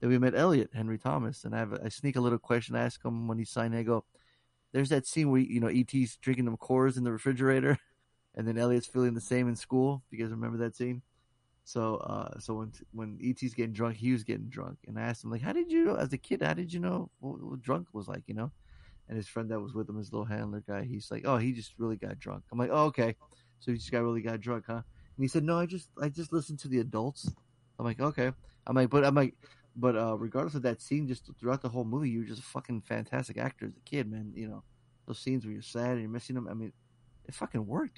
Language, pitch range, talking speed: English, 115-130 Hz, 275 wpm